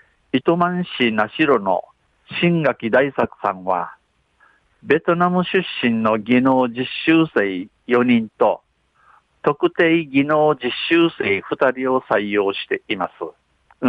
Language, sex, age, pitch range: Japanese, male, 50-69, 110-150 Hz